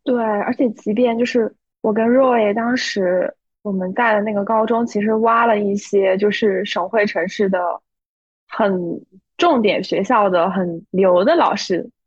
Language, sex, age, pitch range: Chinese, female, 20-39, 200-250 Hz